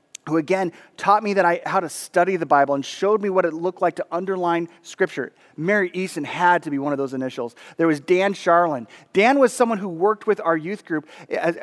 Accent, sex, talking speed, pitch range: American, male, 225 wpm, 165-205 Hz